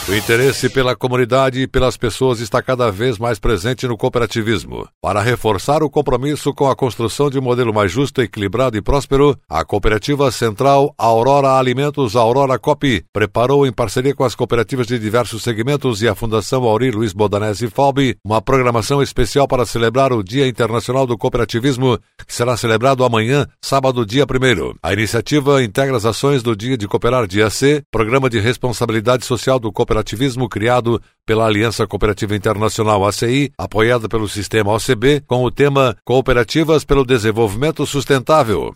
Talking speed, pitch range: 165 wpm, 115-135 Hz